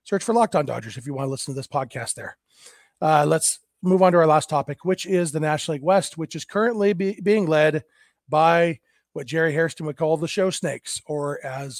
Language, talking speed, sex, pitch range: English, 225 wpm, male, 150-175 Hz